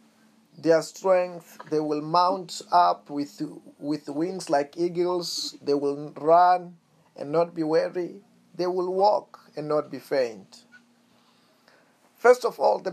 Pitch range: 150-205 Hz